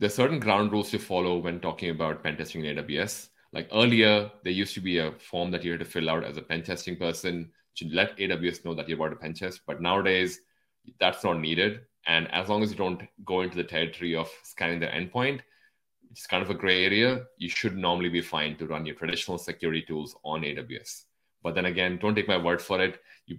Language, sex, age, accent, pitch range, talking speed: English, male, 30-49, Indian, 85-110 Hz, 235 wpm